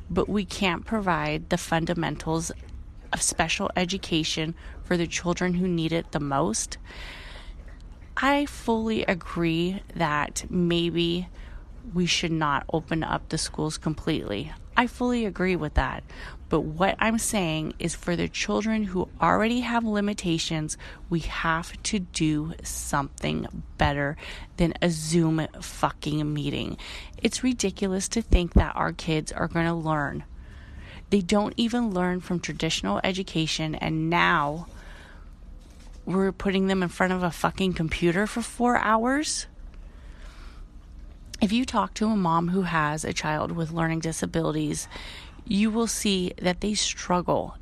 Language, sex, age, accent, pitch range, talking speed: English, female, 30-49, American, 145-195 Hz, 135 wpm